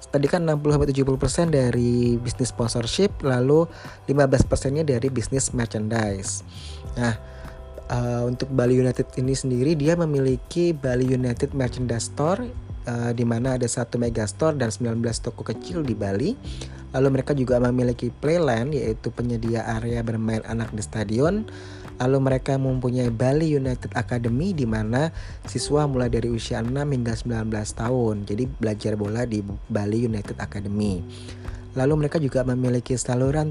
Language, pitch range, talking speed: Indonesian, 110-130 Hz, 140 wpm